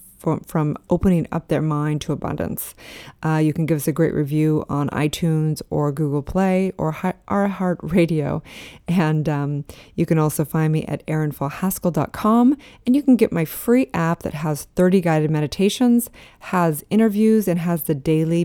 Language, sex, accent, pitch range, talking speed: English, female, American, 150-175 Hz, 170 wpm